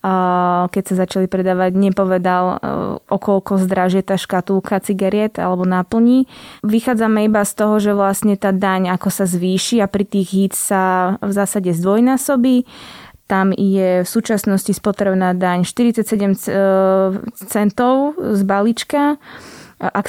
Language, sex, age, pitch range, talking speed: Slovak, female, 20-39, 185-210 Hz, 130 wpm